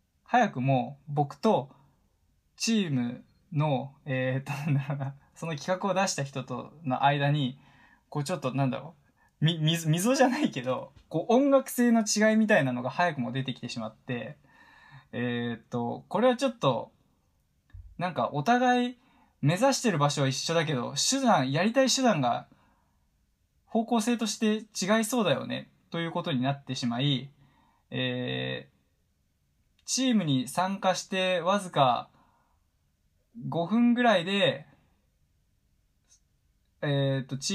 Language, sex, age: Japanese, male, 20-39